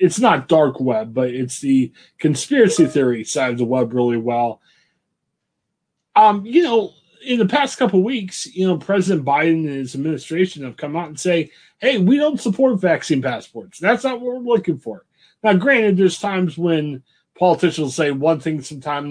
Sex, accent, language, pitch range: male, American, English, 145-210 Hz